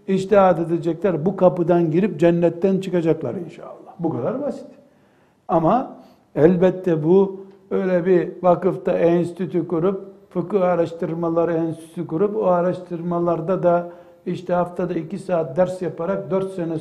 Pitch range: 160-210 Hz